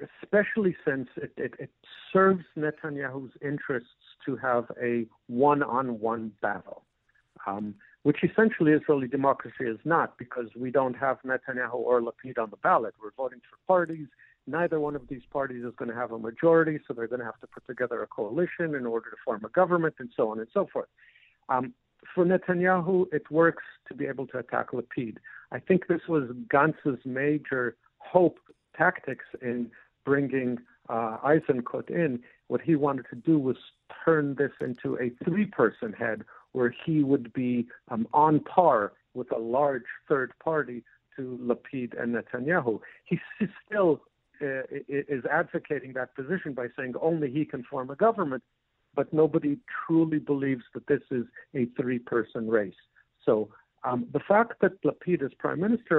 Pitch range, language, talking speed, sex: 125-165 Hz, English, 165 wpm, male